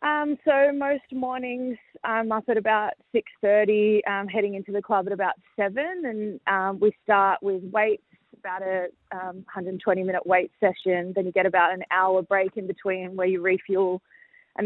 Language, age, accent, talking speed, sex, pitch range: English, 20-39, Australian, 180 wpm, female, 185-215 Hz